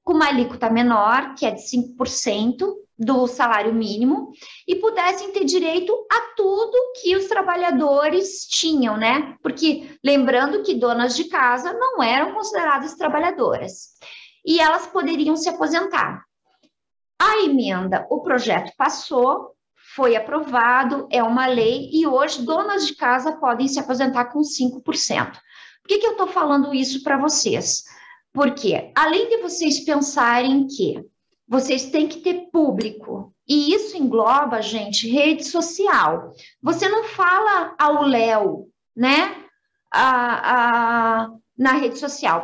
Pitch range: 250-345 Hz